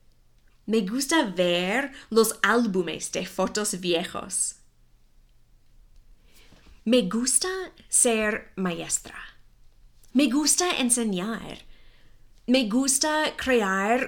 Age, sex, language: 30-49, female, English